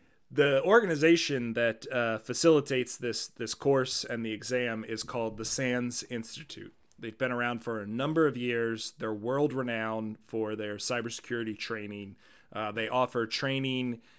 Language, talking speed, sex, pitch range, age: English, 145 wpm, male, 115-135 Hz, 30-49